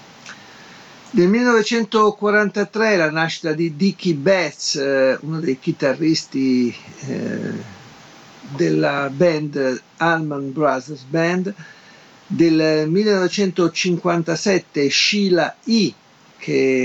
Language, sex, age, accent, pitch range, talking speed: Italian, male, 50-69, native, 140-175 Hz, 70 wpm